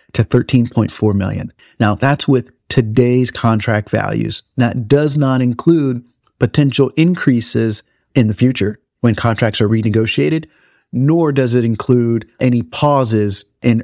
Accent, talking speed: American, 125 wpm